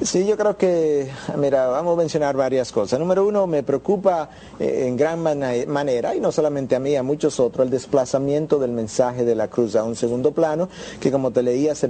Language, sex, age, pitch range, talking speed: Spanish, male, 50-69, 135-175 Hz, 210 wpm